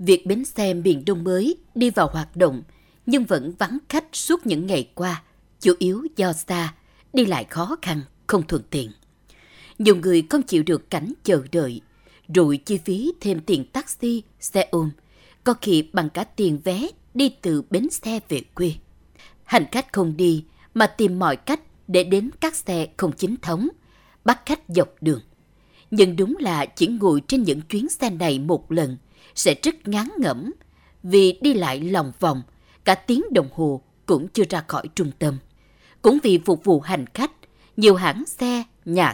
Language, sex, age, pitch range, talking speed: Vietnamese, female, 20-39, 170-245 Hz, 180 wpm